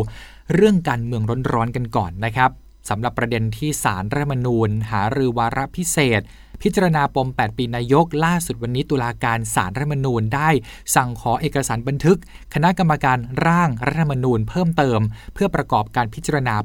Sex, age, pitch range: male, 20-39, 115-150 Hz